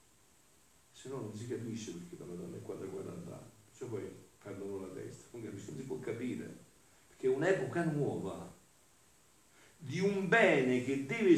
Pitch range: 105-150 Hz